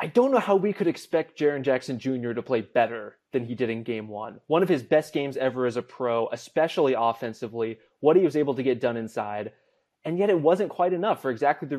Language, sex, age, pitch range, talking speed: English, male, 20-39, 125-160 Hz, 240 wpm